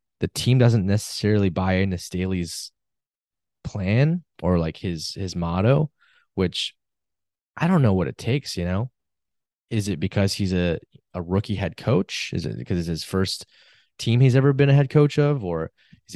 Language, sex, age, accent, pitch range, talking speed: English, male, 20-39, American, 90-120 Hz, 175 wpm